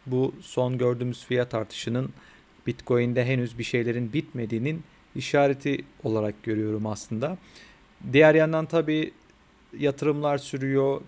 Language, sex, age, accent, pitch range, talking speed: Turkish, male, 40-59, native, 115-135 Hz, 105 wpm